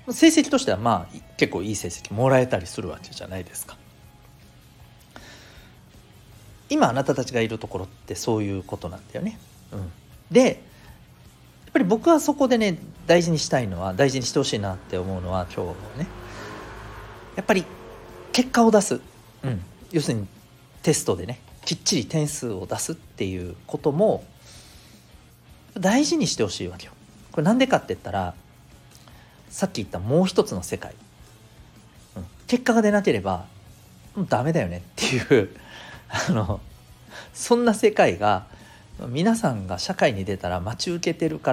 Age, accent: 40-59, native